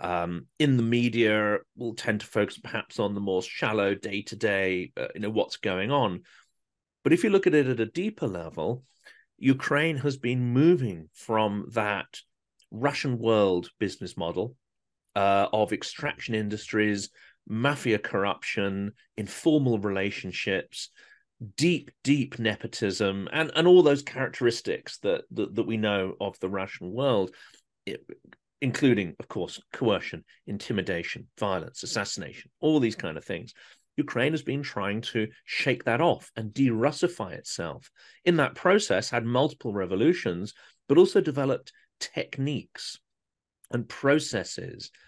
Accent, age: British, 40-59